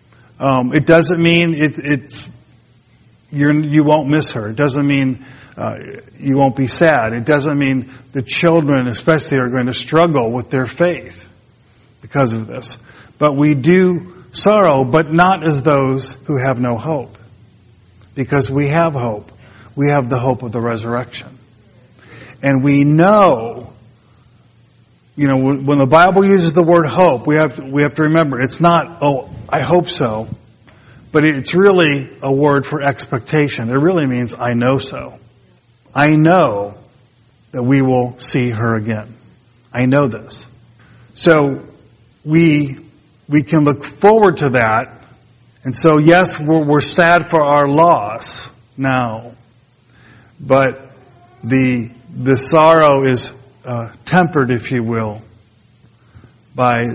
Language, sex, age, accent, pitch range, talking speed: English, male, 50-69, American, 120-150 Hz, 145 wpm